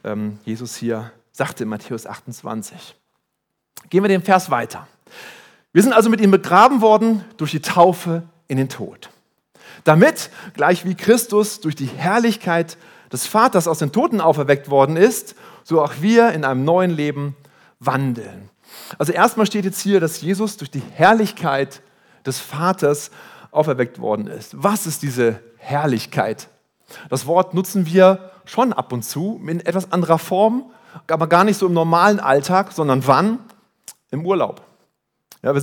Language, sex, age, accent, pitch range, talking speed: German, male, 40-59, German, 130-185 Hz, 150 wpm